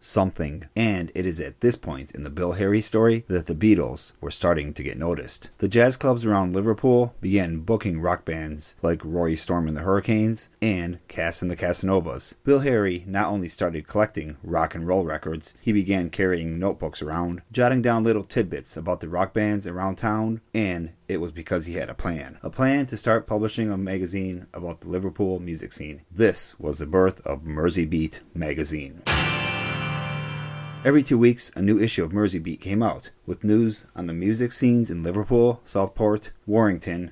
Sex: male